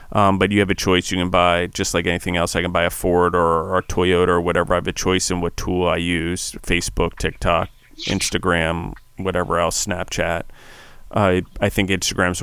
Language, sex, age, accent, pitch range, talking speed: English, male, 30-49, American, 90-100 Hz, 210 wpm